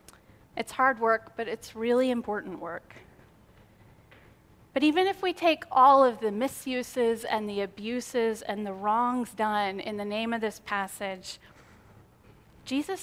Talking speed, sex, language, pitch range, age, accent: 145 wpm, female, English, 210-260 Hz, 30-49, American